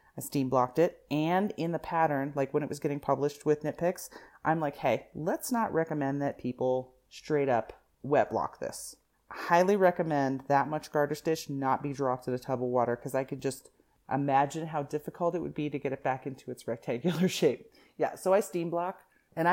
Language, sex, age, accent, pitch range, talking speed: English, female, 30-49, American, 130-160 Hz, 205 wpm